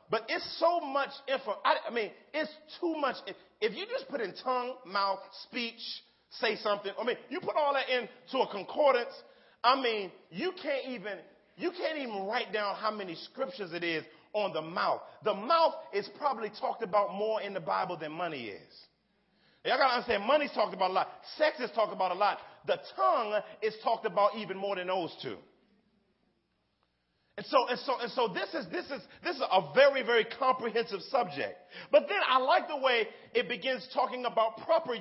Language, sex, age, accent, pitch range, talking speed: English, male, 40-59, American, 195-260 Hz, 195 wpm